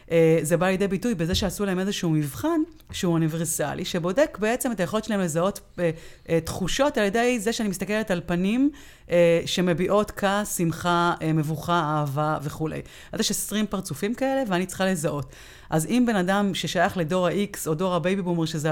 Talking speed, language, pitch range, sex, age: 165 wpm, Hebrew, 160-200 Hz, female, 30-49